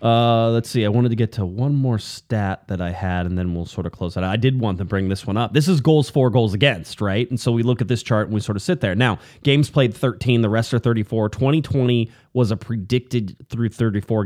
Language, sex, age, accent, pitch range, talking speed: English, male, 30-49, American, 105-145 Hz, 275 wpm